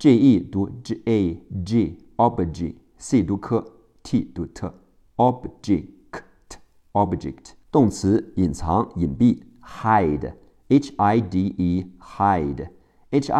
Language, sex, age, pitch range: Chinese, male, 50-69, 90-115 Hz